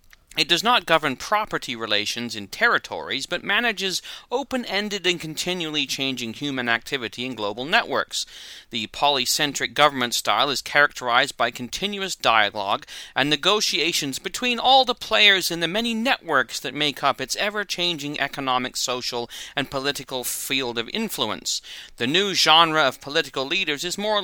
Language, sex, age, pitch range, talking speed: English, male, 30-49, 120-180 Hz, 145 wpm